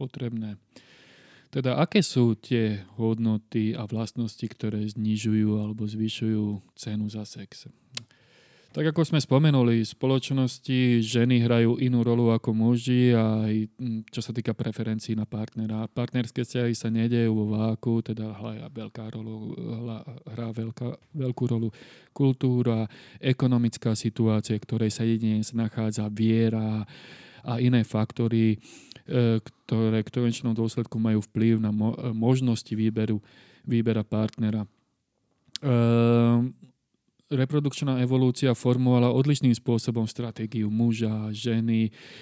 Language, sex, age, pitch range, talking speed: Slovak, male, 30-49, 110-125 Hz, 110 wpm